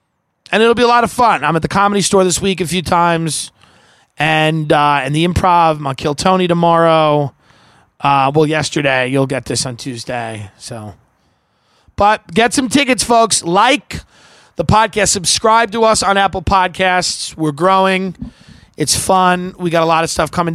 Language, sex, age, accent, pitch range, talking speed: English, male, 20-39, American, 155-190 Hz, 180 wpm